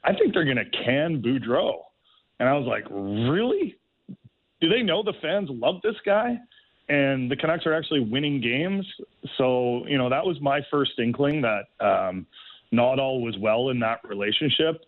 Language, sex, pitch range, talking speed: English, male, 115-140 Hz, 180 wpm